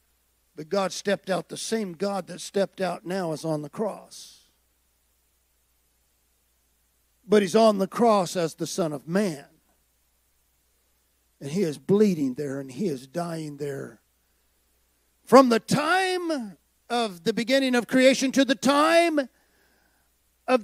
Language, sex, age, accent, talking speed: English, male, 50-69, American, 135 wpm